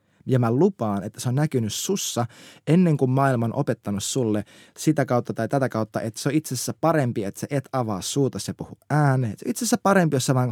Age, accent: 20-39, native